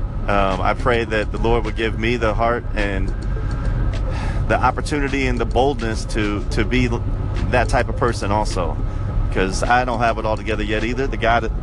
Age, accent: 30-49, American